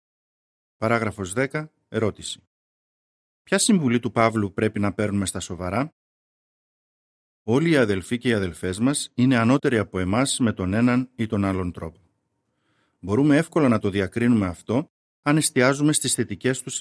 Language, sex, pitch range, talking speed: Greek, male, 100-130 Hz, 145 wpm